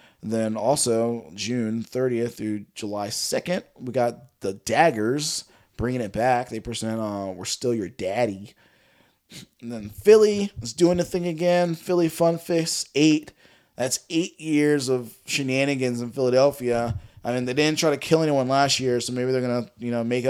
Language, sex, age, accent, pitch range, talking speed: English, male, 20-39, American, 115-155 Hz, 170 wpm